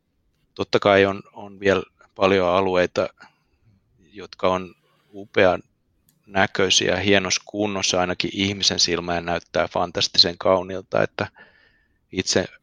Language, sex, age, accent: Finnish, male, 30-49, native